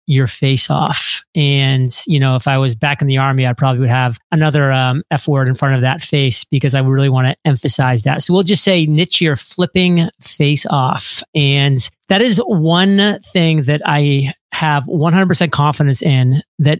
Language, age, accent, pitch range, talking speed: English, 30-49, American, 135-165 Hz, 195 wpm